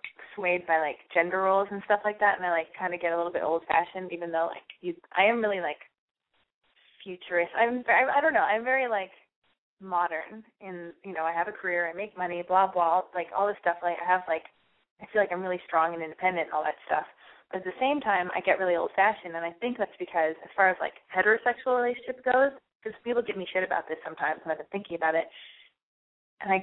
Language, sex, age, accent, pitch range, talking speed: English, female, 20-39, American, 175-215 Hz, 240 wpm